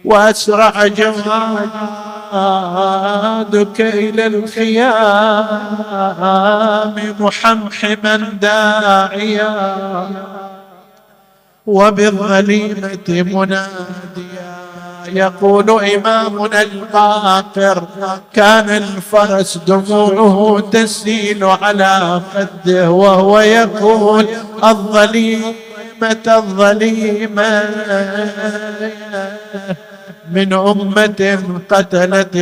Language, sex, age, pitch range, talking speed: Arabic, male, 50-69, 195-215 Hz, 45 wpm